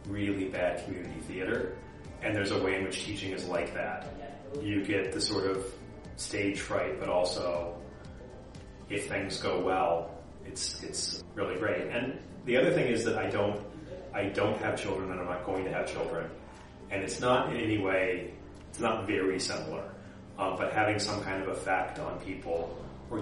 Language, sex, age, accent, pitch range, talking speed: English, male, 30-49, American, 90-105 Hz, 180 wpm